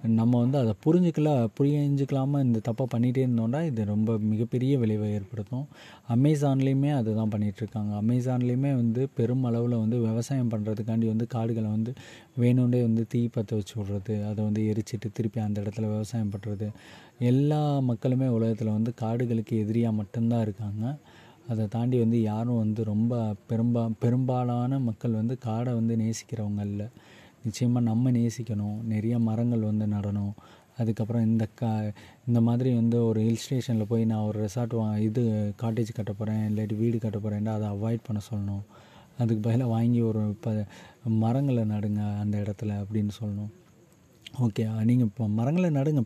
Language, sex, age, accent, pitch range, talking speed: Tamil, male, 30-49, native, 110-125 Hz, 140 wpm